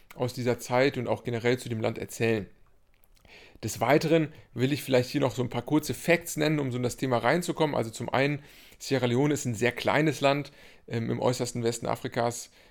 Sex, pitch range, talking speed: male, 120-145 Hz, 210 wpm